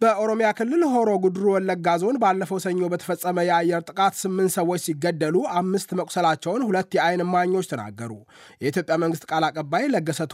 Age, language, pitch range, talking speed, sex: 20-39, Amharic, 165-190 Hz, 135 wpm, male